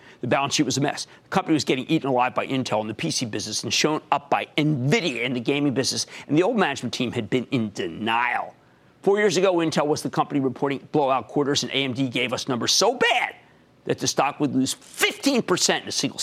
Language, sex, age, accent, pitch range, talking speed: English, male, 50-69, American, 125-165 Hz, 230 wpm